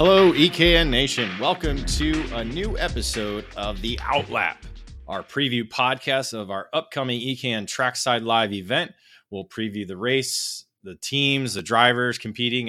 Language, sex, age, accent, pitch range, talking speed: English, male, 30-49, American, 100-125 Hz, 140 wpm